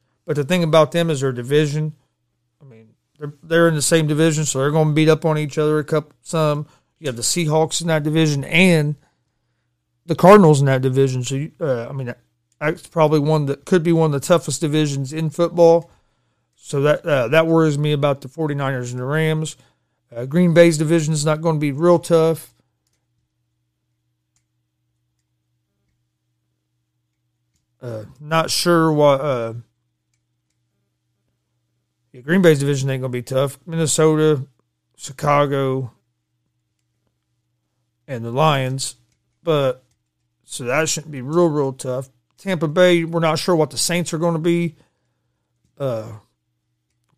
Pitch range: 110-155 Hz